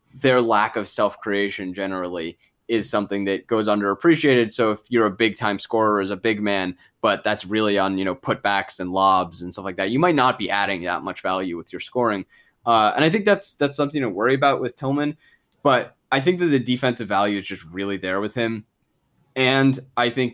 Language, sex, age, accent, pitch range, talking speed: English, male, 20-39, American, 100-125 Hz, 220 wpm